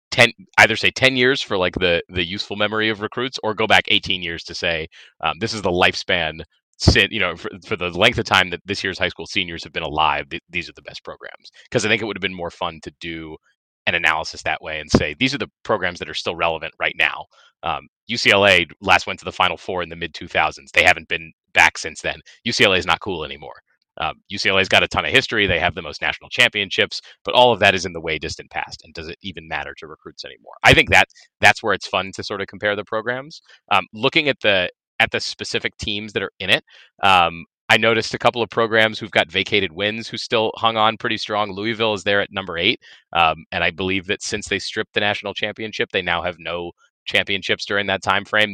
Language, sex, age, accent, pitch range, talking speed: English, male, 30-49, American, 95-115 Hz, 240 wpm